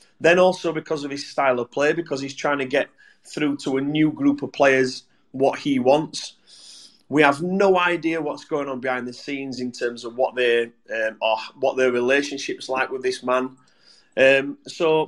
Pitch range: 130-185 Hz